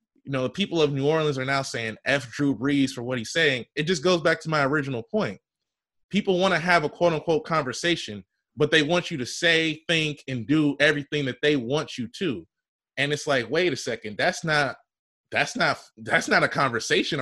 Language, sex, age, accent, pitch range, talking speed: English, male, 20-39, American, 130-170 Hz, 215 wpm